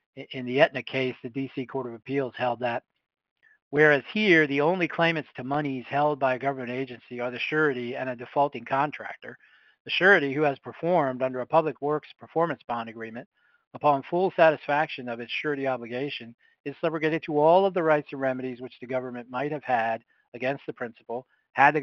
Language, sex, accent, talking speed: English, male, American, 190 wpm